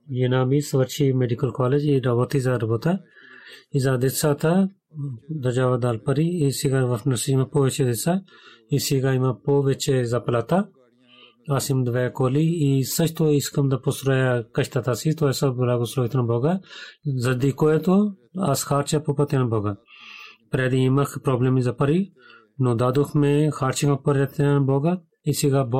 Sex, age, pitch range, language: male, 30-49, 125-145 Hz, Bulgarian